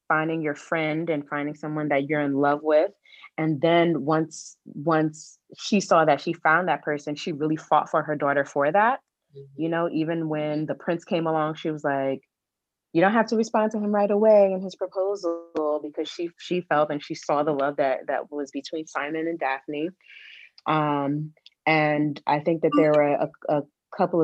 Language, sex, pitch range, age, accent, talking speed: English, female, 150-170 Hz, 30-49, American, 195 wpm